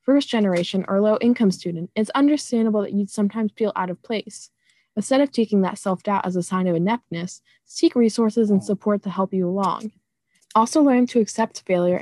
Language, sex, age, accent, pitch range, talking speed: English, female, 20-39, American, 185-225 Hz, 180 wpm